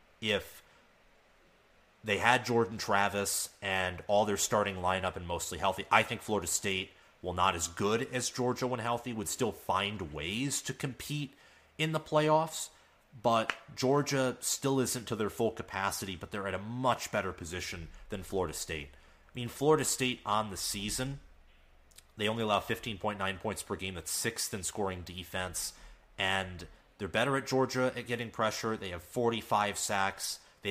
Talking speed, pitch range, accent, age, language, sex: 165 wpm, 90-120 Hz, American, 30-49, English, male